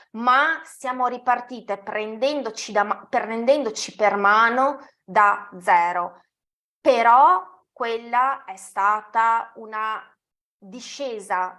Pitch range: 215-280 Hz